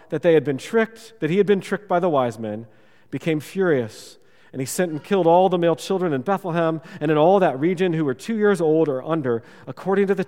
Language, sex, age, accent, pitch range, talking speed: English, male, 40-59, American, 135-195 Hz, 245 wpm